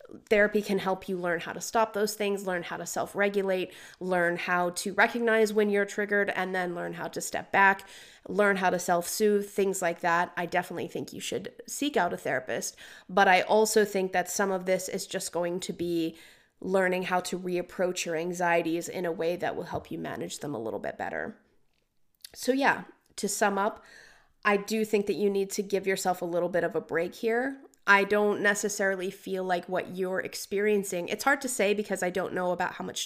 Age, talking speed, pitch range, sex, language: 30-49, 210 wpm, 175-210 Hz, female, English